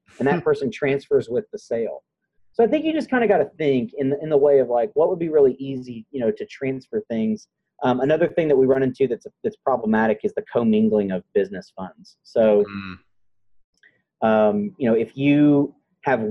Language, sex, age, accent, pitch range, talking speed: English, male, 30-49, American, 105-150 Hz, 215 wpm